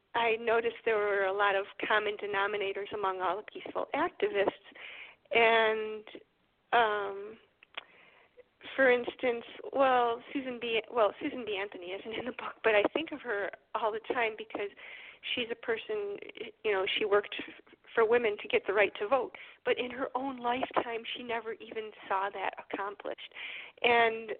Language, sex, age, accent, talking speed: English, female, 40-59, American, 160 wpm